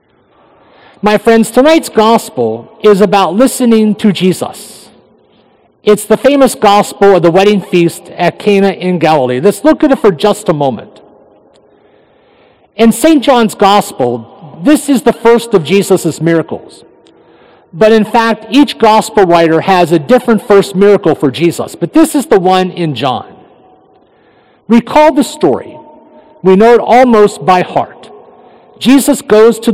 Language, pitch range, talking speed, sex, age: English, 175-230 Hz, 145 wpm, male, 50-69